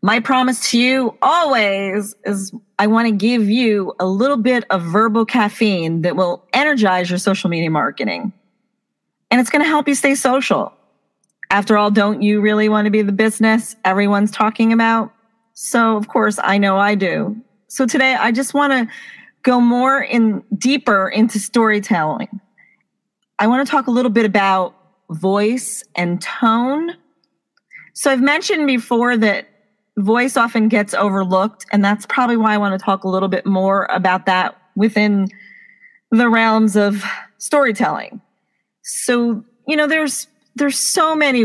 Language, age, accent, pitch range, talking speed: English, 40-59, American, 200-240 Hz, 160 wpm